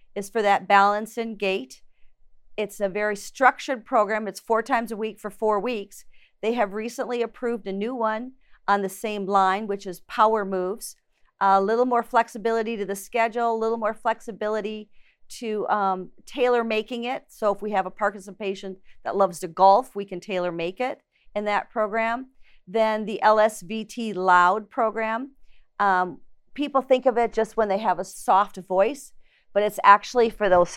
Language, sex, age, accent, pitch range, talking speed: English, female, 40-59, American, 200-235 Hz, 175 wpm